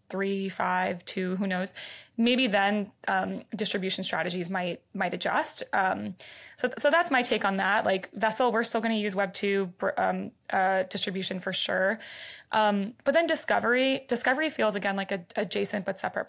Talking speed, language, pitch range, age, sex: 180 wpm, English, 195-235 Hz, 20-39, female